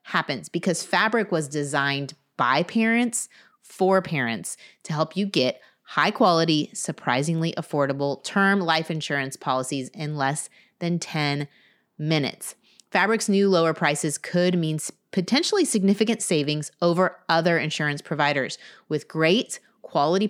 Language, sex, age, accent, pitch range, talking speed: English, female, 30-49, American, 150-185 Hz, 125 wpm